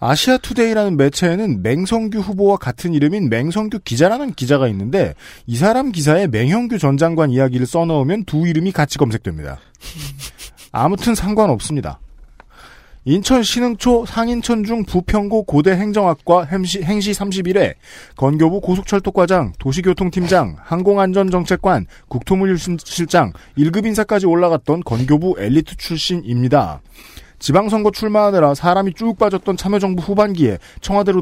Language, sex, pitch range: Korean, male, 140-200 Hz